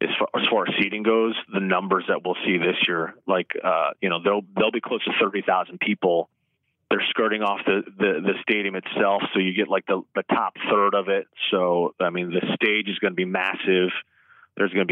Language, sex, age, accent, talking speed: English, male, 30-49, American, 215 wpm